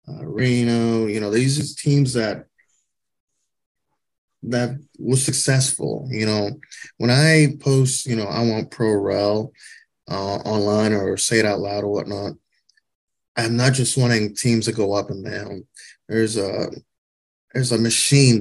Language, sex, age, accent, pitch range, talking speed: English, male, 30-49, American, 110-140 Hz, 150 wpm